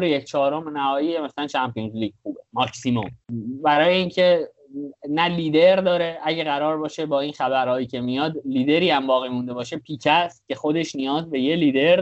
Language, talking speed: Persian, 165 wpm